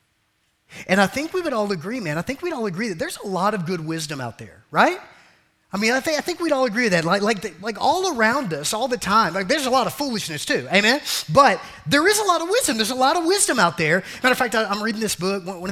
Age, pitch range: 30-49, 155-210 Hz